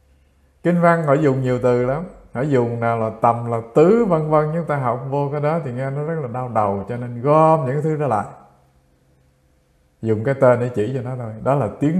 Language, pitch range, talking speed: English, 110-160 Hz, 235 wpm